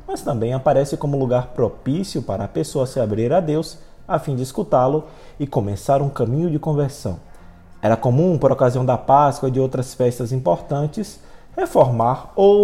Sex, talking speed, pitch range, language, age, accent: male, 170 wpm, 120-150 Hz, Portuguese, 20-39, Brazilian